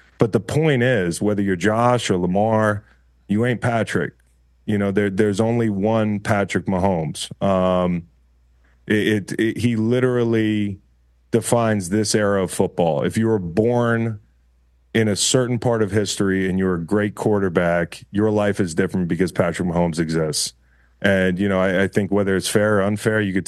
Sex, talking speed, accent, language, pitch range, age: male, 170 wpm, American, English, 90-105 Hz, 30-49